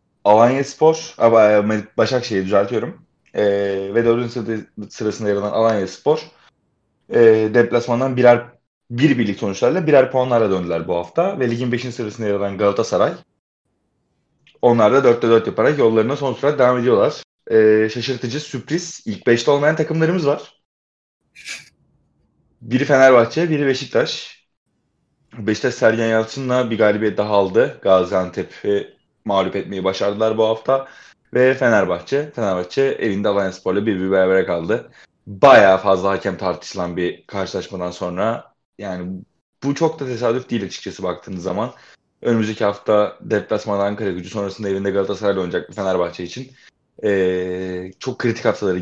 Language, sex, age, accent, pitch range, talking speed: Turkish, male, 30-49, native, 95-125 Hz, 125 wpm